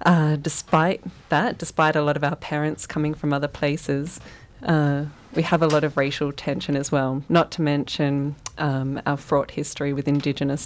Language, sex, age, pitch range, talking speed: English, female, 20-39, 145-160 Hz, 180 wpm